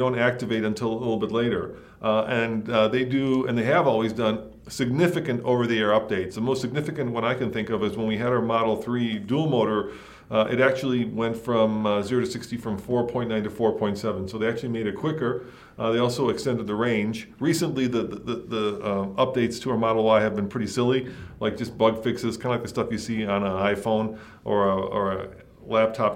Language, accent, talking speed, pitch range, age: English, American, 215 wpm, 110-125 Hz, 40-59